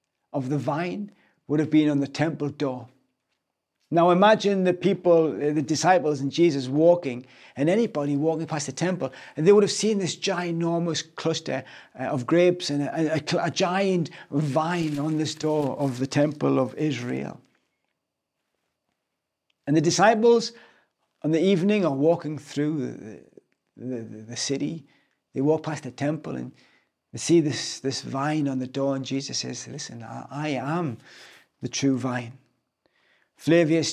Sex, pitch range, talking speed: male, 135-170 Hz, 150 wpm